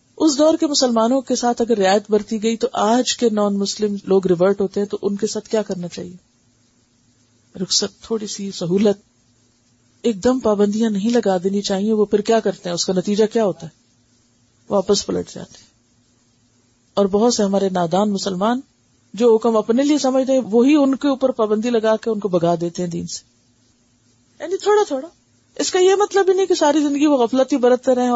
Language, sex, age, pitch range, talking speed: Urdu, female, 50-69, 175-265 Hz, 200 wpm